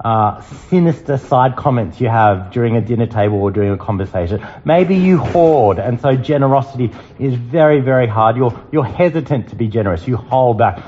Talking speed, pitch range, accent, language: 180 wpm, 95-145 Hz, Australian, English